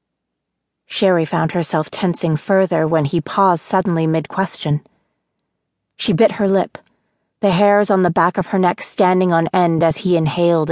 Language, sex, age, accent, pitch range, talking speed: English, female, 30-49, American, 155-190 Hz, 155 wpm